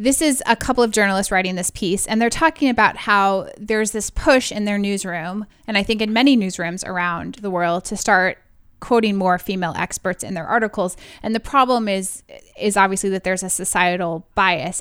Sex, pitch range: female, 185-225 Hz